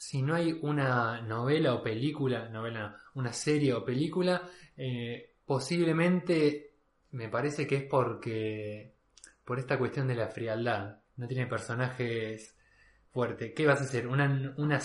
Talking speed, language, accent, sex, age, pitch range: 145 wpm, Spanish, Argentinian, male, 20-39, 120-150 Hz